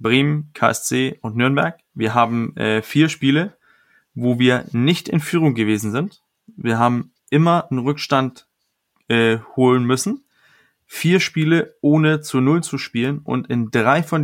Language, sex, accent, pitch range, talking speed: German, male, German, 115-145 Hz, 150 wpm